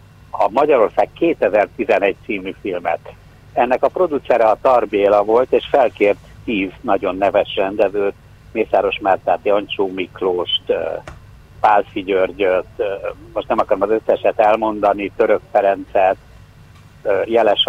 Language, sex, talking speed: Hungarian, male, 110 wpm